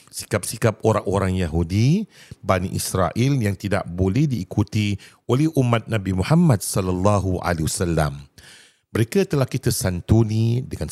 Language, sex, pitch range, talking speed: Malay, male, 95-120 Hz, 115 wpm